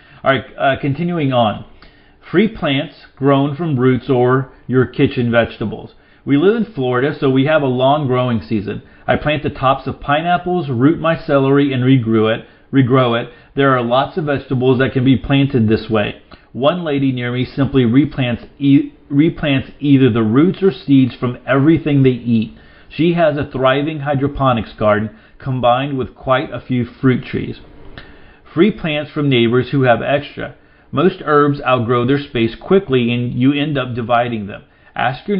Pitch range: 120-145 Hz